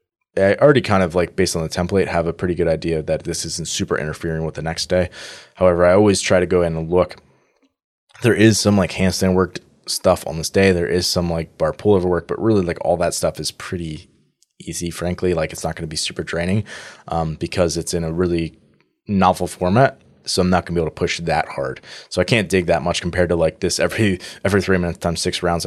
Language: English